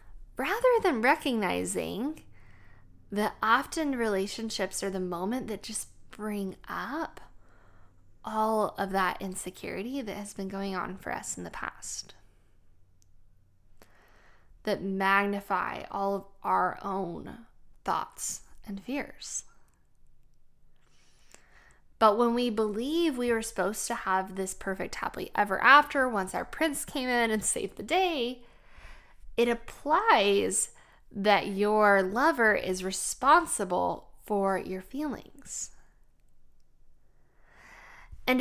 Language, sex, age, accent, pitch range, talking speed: English, female, 10-29, American, 190-255 Hz, 110 wpm